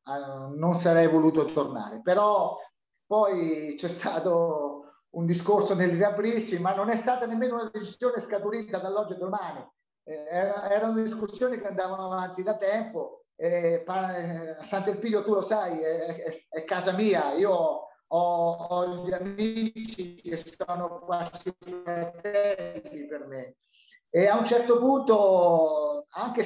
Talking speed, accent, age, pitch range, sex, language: 140 wpm, native, 30-49, 175-225 Hz, male, Italian